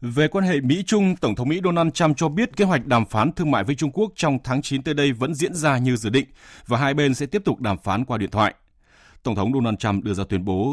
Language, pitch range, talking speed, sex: Vietnamese, 100-150 Hz, 280 wpm, male